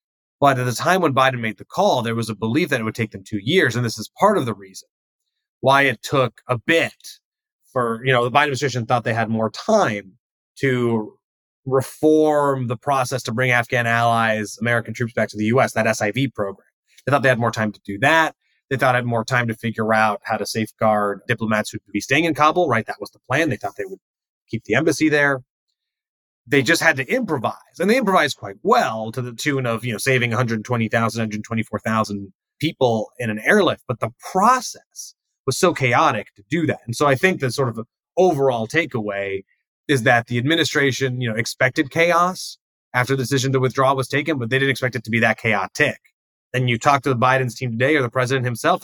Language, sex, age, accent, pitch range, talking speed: English, male, 30-49, American, 115-145 Hz, 220 wpm